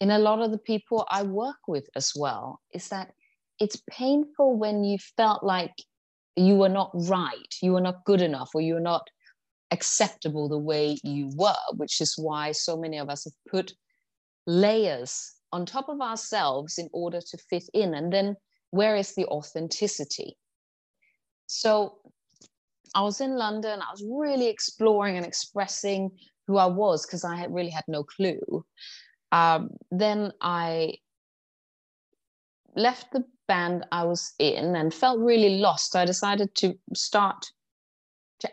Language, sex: English, female